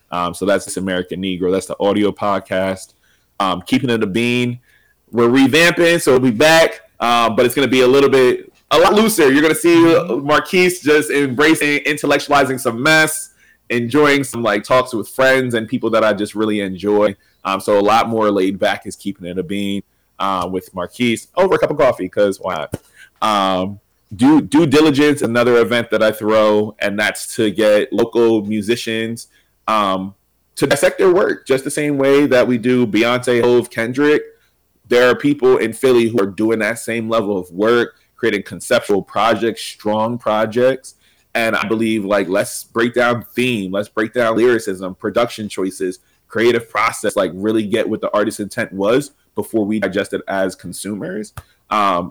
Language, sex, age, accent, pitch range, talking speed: English, male, 20-39, American, 100-130 Hz, 180 wpm